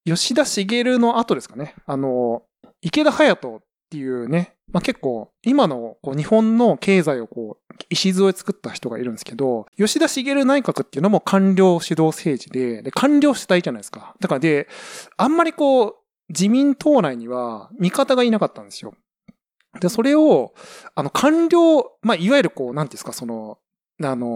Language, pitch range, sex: Japanese, 150-235 Hz, male